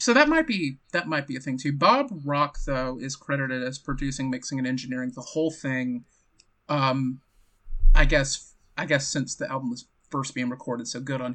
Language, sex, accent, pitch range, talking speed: English, male, American, 130-170 Hz, 200 wpm